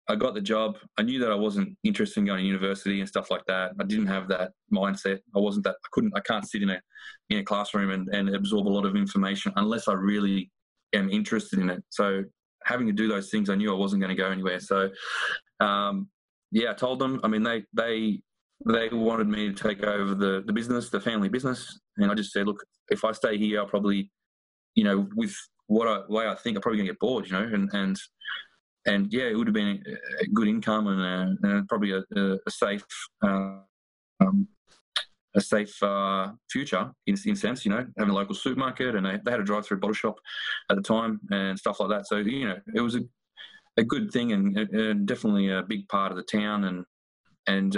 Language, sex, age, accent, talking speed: English, male, 20-39, Australian, 225 wpm